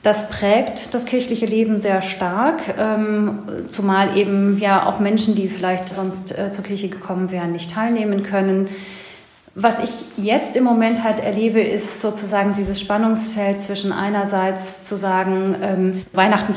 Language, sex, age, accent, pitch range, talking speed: German, female, 30-49, German, 185-210 Hz, 140 wpm